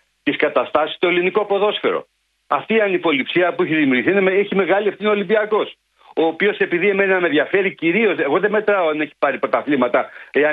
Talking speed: 180 wpm